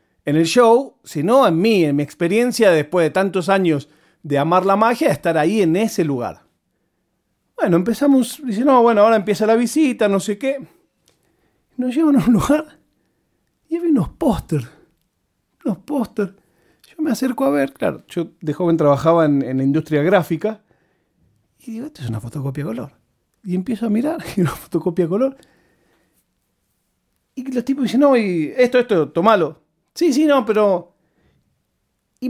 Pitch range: 170-255 Hz